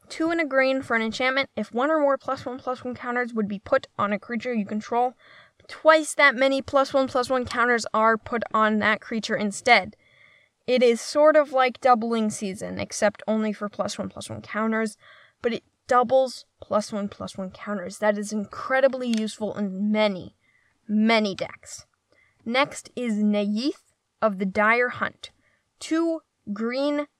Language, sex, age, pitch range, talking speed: English, female, 10-29, 215-265 Hz, 170 wpm